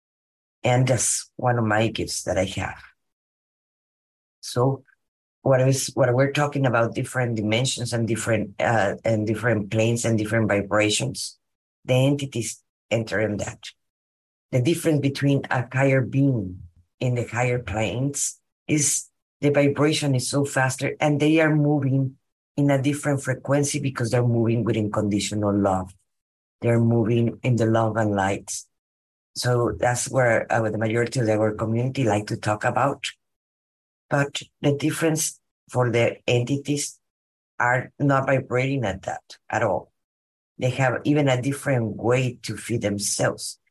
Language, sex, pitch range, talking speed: English, female, 110-135 Hz, 145 wpm